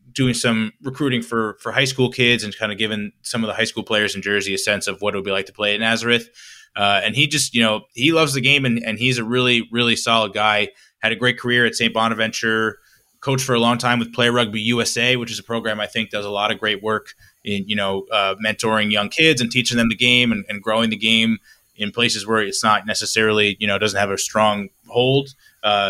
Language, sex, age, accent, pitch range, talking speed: English, male, 20-39, American, 110-130 Hz, 255 wpm